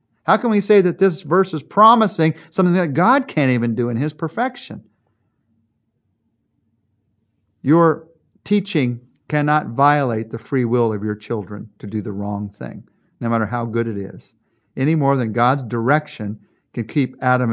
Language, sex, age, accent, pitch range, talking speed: English, male, 50-69, American, 115-165 Hz, 160 wpm